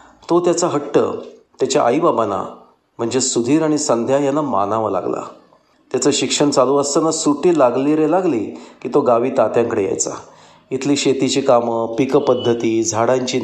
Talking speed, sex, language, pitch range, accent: 135 wpm, male, Marathi, 115-155 Hz, native